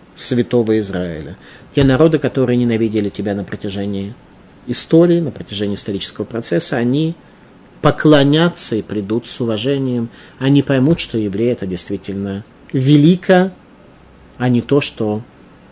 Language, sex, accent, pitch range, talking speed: Russian, male, native, 110-150 Hz, 120 wpm